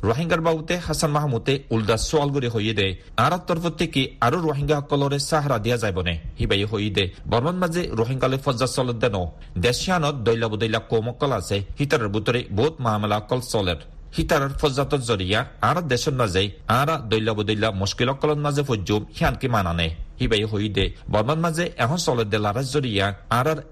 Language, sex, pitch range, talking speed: Bengali, male, 105-145 Hz, 95 wpm